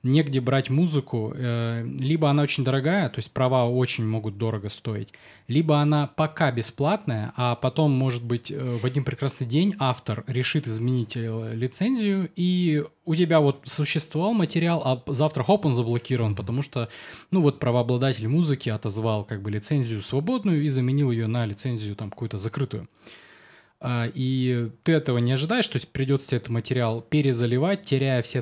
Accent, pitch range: native, 115-155 Hz